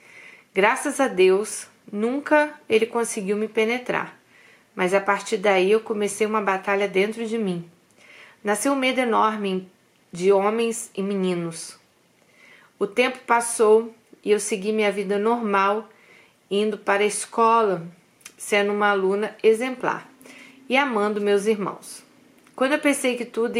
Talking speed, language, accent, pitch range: 135 wpm, Portuguese, Brazilian, 190-230 Hz